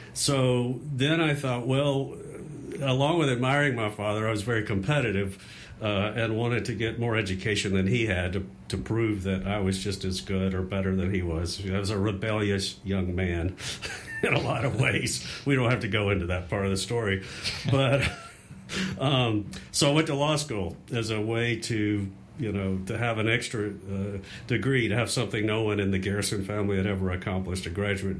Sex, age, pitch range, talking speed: male, 50-69, 95-120 Hz, 200 wpm